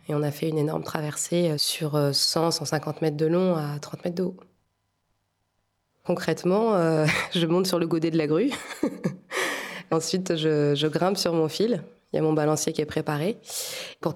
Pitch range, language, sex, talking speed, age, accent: 145-175 Hz, French, female, 180 wpm, 20-39, French